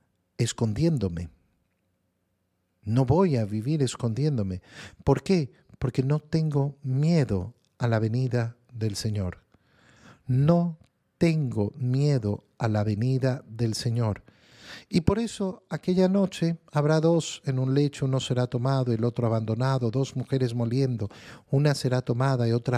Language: Spanish